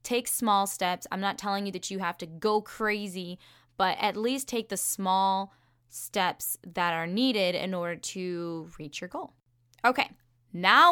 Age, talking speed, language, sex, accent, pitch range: 10-29, 170 wpm, English, female, American, 180-245 Hz